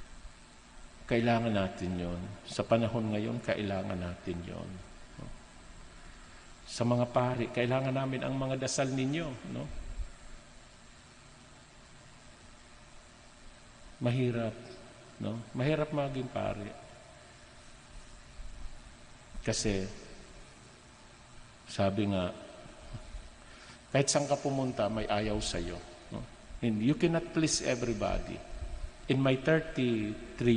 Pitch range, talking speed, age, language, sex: 95-125 Hz, 80 wpm, 50-69, Filipino, male